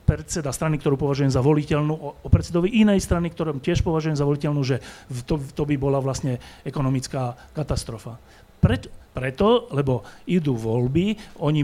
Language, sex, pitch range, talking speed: Slovak, male, 130-170 Hz, 150 wpm